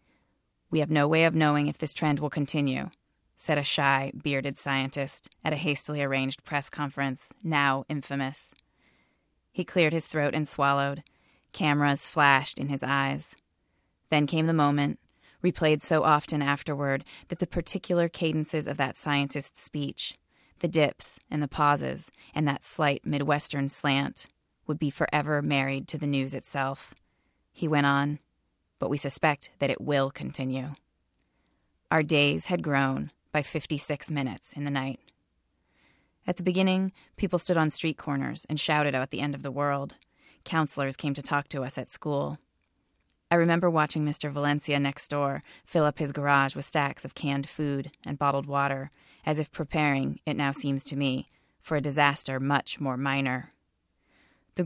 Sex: female